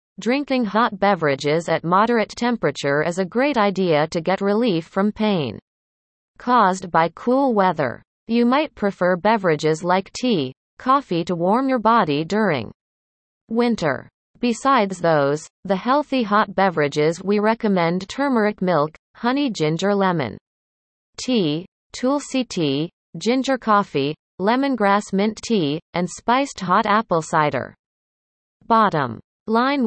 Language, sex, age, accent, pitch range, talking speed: English, female, 30-49, American, 165-230 Hz, 120 wpm